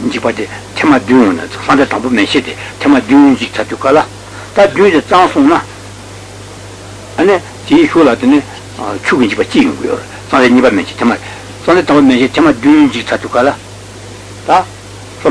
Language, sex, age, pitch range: Italian, male, 60-79, 100-145 Hz